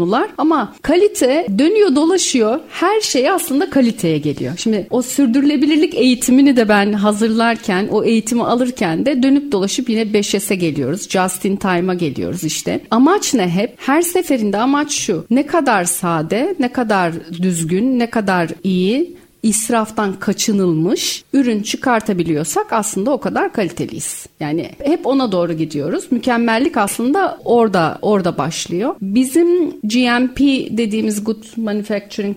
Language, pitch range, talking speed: Turkish, 185-280 Hz, 130 wpm